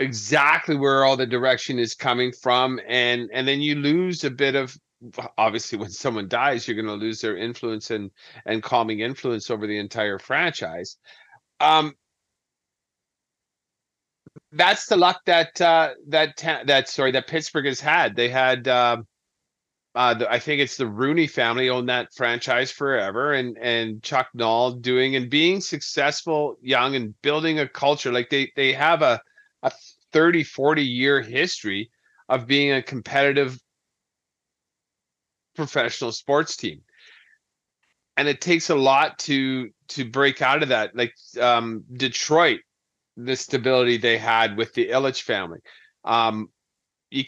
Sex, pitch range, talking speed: male, 120-145 Hz, 145 wpm